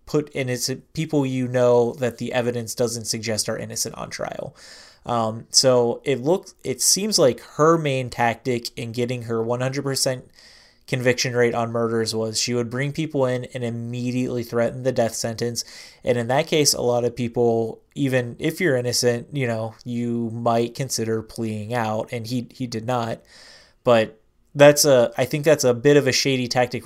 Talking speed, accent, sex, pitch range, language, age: 180 wpm, American, male, 120-135 Hz, English, 20-39